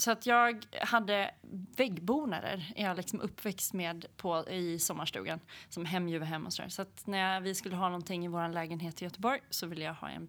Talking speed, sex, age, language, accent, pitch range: 205 wpm, female, 30-49, Swedish, native, 165-195 Hz